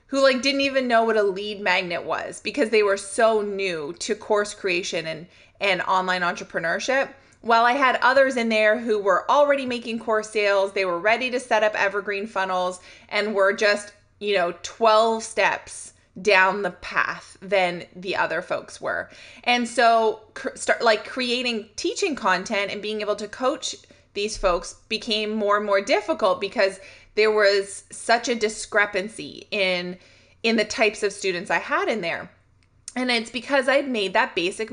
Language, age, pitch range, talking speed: English, 20-39, 190-235 Hz, 170 wpm